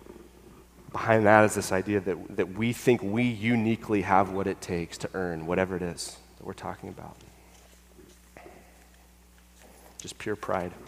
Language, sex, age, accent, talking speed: English, male, 30-49, American, 150 wpm